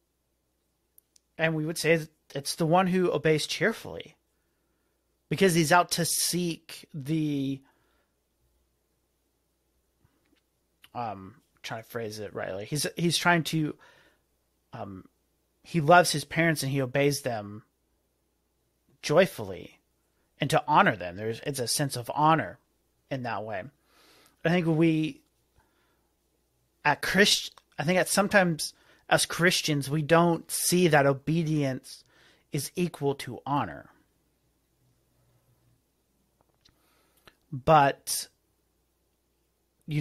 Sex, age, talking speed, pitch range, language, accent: male, 30-49, 105 wpm, 120-165 Hz, English, American